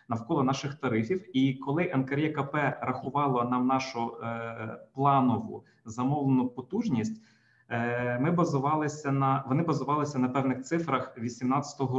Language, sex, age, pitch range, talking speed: Ukrainian, male, 20-39, 125-150 Hz, 120 wpm